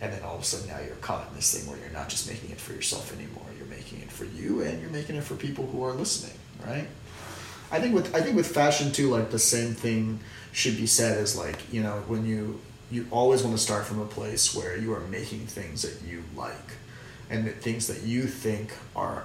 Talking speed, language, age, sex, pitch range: 250 wpm, English, 30-49, male, 105-120 Hz